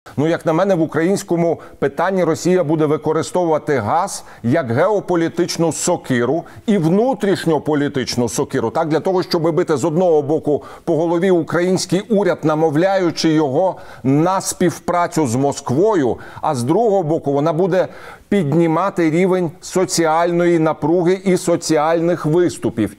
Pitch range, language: 150-180 Hz, Ukrainian